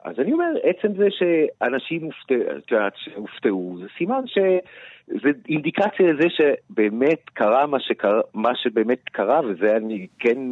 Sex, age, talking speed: male, 50-69, 125 wpm